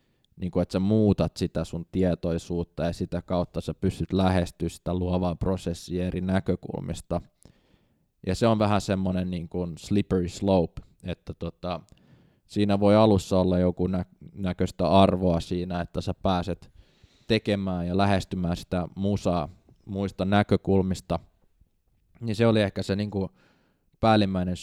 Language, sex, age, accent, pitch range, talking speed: Finnish, male, 20-39, native, 90-100 Hz, 140 wpm